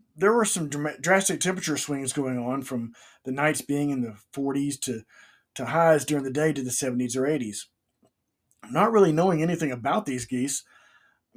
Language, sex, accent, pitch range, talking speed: English, male, American, 130-180 Hz, 175 wpm